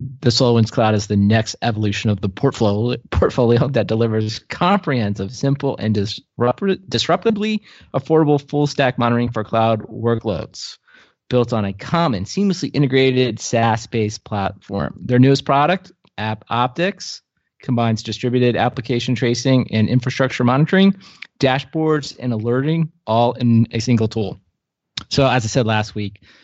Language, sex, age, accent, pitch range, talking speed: English, male, 30-49, American, 105-130 Hz, 130 wpm